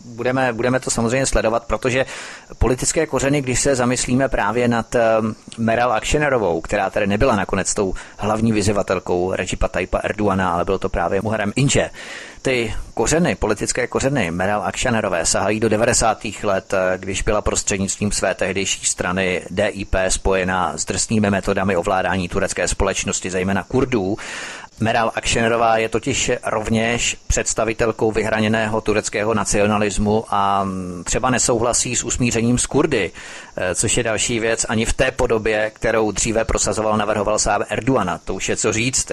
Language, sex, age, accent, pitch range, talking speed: Czech, male, 30-49, native, 100-115 Hz, 140 wpm